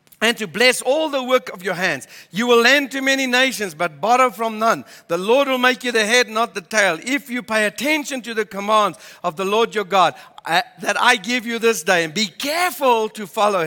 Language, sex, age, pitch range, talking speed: English, male, 60-79, 170-250 Hz, 235 wpm